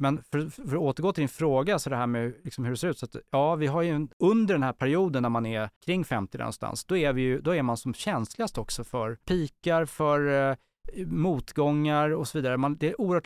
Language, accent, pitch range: Swedish, Norwegian, 120-155 Hz